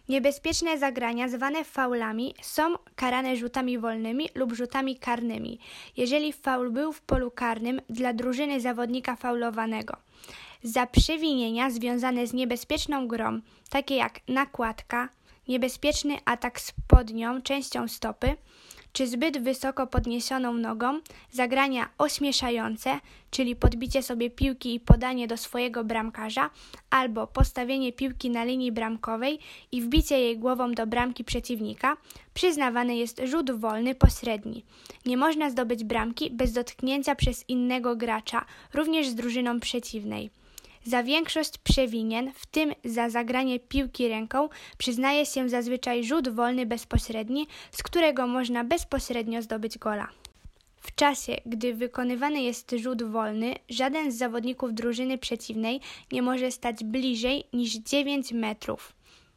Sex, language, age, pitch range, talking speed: female, Polish, 20-39, 235-270 Hz, 125 wpm